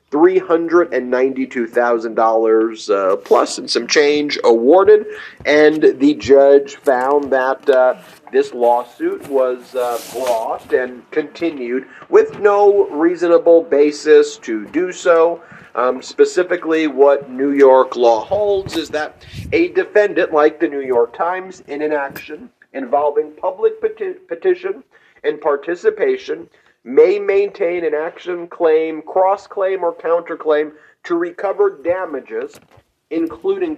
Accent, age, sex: American, 40-59, male